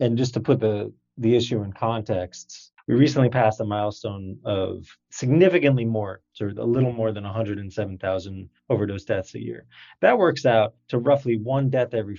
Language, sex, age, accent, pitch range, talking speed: English, male, 20-39, American, 105-125 Hz, 170 wpm